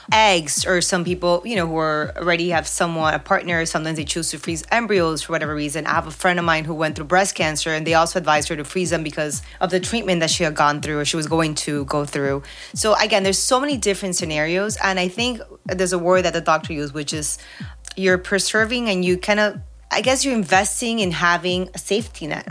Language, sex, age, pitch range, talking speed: English, female, 30-49, 155-185 Hz, 245 wpm